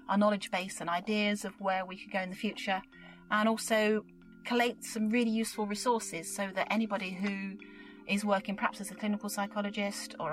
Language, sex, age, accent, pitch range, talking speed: English, female, 30-49, British, 195-225 Hz, 180 wpm